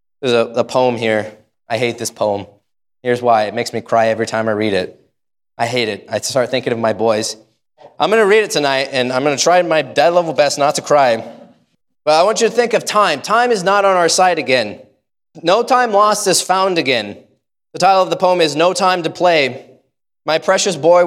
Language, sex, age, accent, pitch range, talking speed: English, male, 20-39, American, 135-180 Hz, 230 wpm